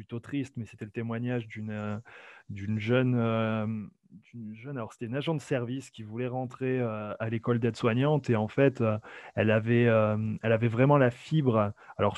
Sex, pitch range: male, 110-130 Hz